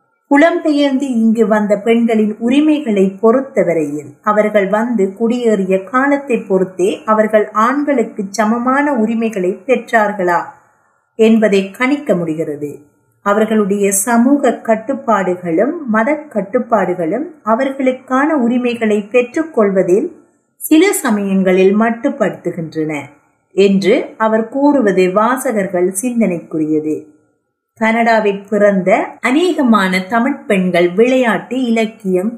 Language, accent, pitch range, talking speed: Tamil, native, 195-255 Hz, 80 wpm